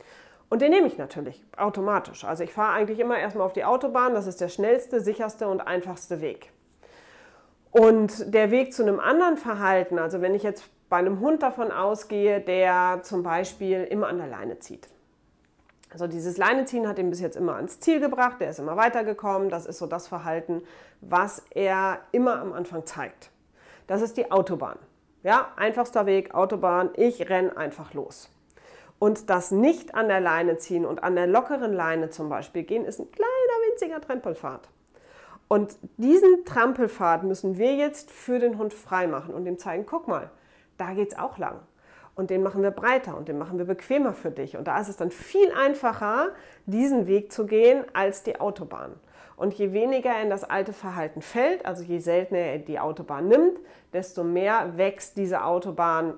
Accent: German